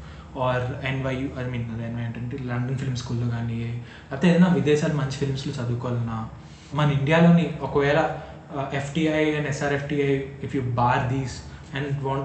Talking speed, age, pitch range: 170 wpm, 20-39, 125-165 Hz